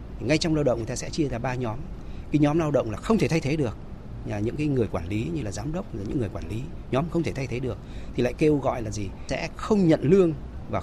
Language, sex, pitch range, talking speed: Vietnamese, male, 110-160 Hz, 295 wpm